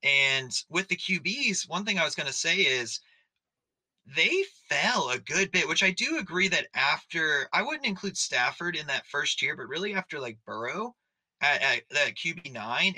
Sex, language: male, English